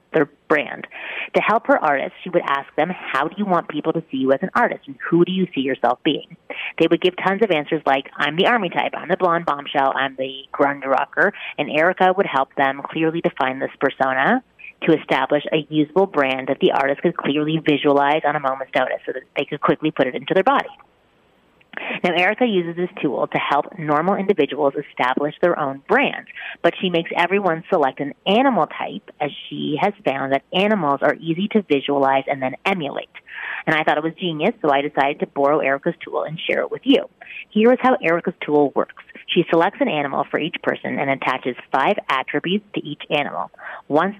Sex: female